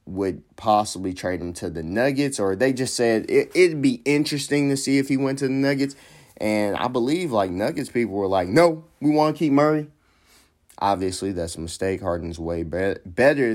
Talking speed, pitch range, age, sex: 190 wpm, 95-140 Hz, 30-49, male